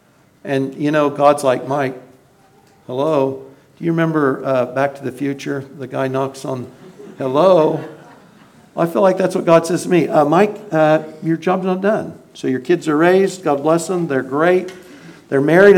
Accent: American